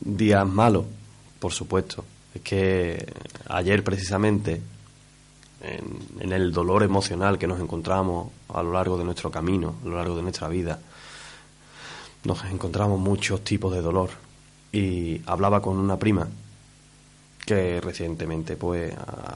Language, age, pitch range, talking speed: Spanish, 20-39, 90-110 Hz, 135 wpm